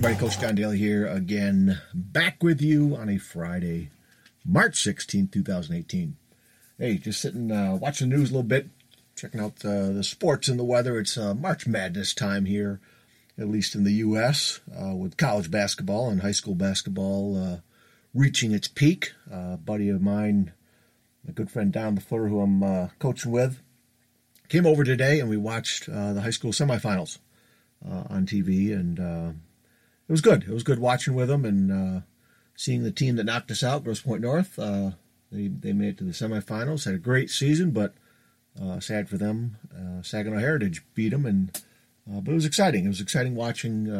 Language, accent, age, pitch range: English, American, 50-69, 95-130 Hz